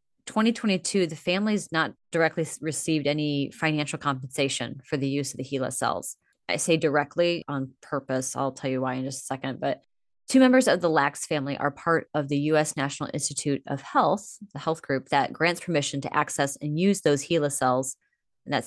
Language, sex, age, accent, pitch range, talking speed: English, female, 30-49, American, 140-165 Hz, 195 wpm